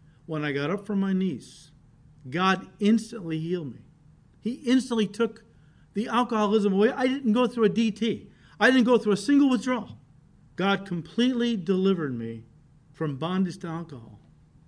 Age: 50-69